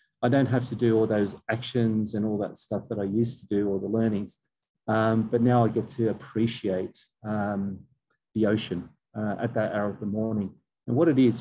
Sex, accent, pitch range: male, Australian, 105-120 Hz